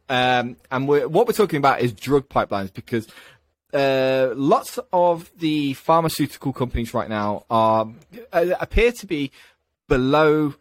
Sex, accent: male, British